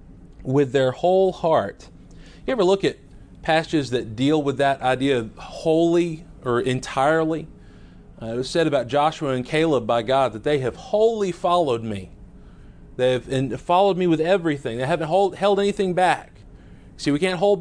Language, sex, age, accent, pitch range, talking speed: English, male, 40-59, American, 135-180 Hz, 175 wpm